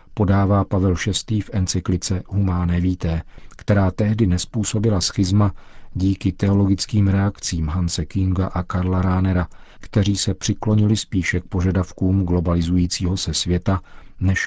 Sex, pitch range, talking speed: male, 85-100 Hz, 120 wpm